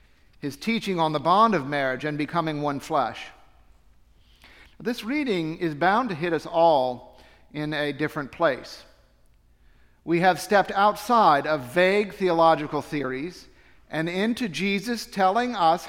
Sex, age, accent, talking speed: male, 50-69, American, 135 wpm